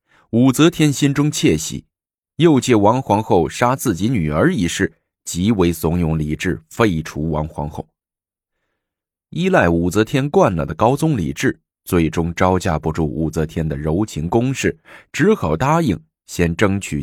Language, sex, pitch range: Chinese, male, 80-100 Hz